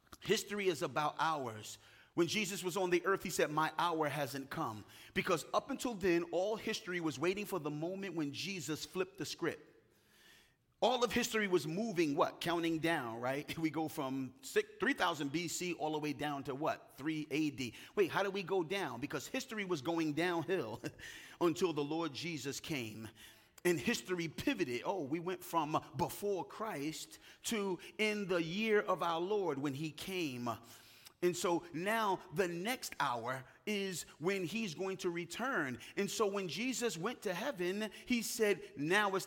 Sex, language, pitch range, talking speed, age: male, English, 155-205 Hz, 170 wpm, 30-49